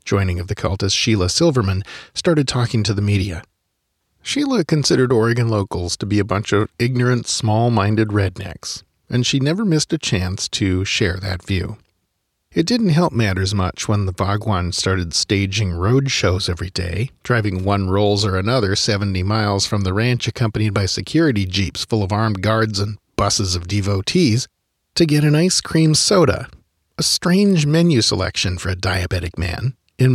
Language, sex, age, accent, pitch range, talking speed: English, male, 40-59, American, 95-130 Hz, 165 wpm